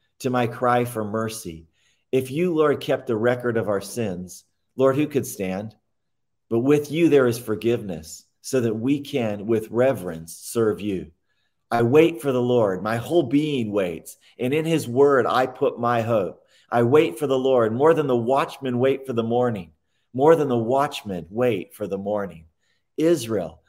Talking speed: 180 wpm